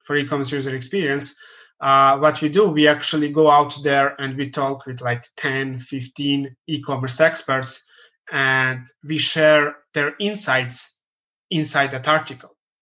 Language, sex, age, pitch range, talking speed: English, male, 20-39, 135-160 Hz, 135 wpm